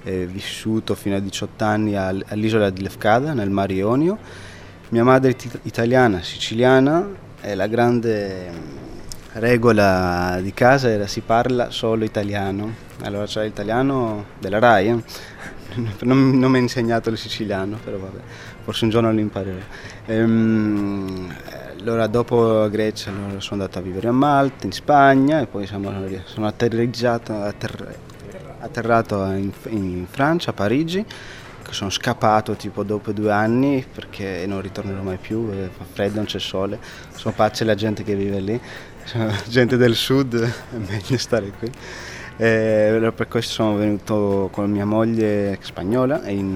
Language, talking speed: Italian, 150 wpm